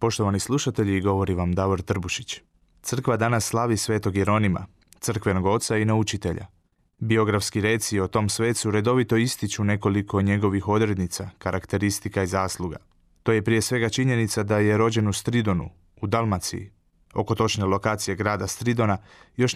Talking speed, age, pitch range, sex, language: 140 wpm, 20-39, 100-115 Hz, male, Croatian